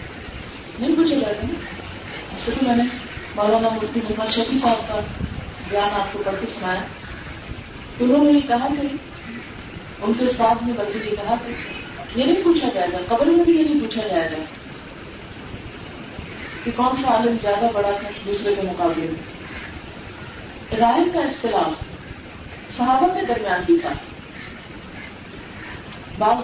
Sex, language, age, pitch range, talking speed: female, Urdu, 30-49, 225-320 Hz, 150 wpm